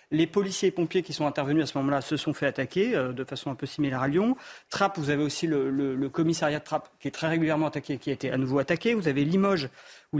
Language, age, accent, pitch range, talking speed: French, 40-59, French, 140-170 Hz, 280 wpm